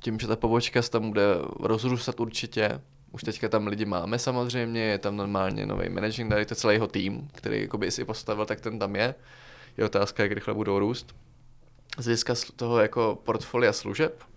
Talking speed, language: 190 wpm, Czech